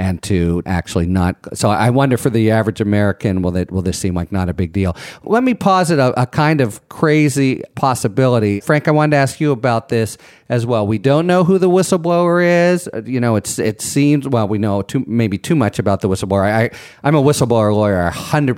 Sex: male